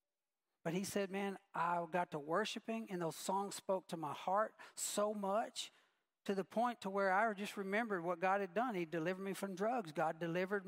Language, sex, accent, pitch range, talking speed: English, male, American, 180-220 Hz, 200 wpm